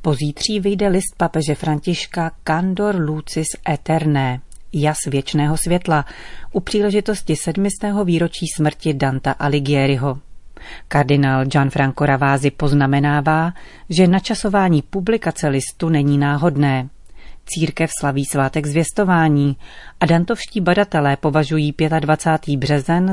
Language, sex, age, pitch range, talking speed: Czech, female, 40-59, 140-170 Hz, 100 wpm